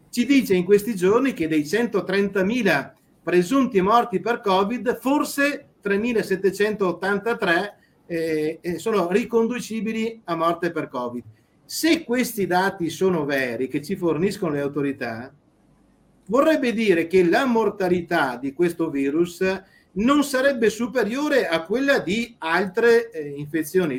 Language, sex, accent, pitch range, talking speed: Italian, male, native, 145-205 Hz, 120 wpm